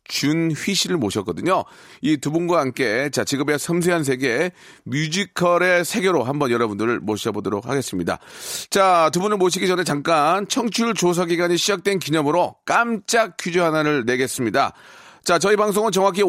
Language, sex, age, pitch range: Korean, male, 40-59, 150-195 Hz